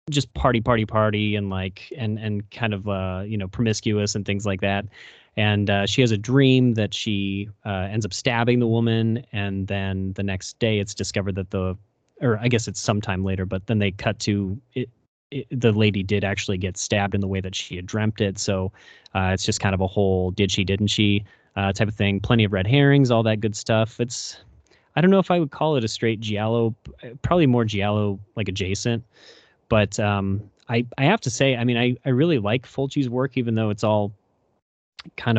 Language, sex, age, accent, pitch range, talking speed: English, male, 30-49, American, 100-120 Hz, 220 wpm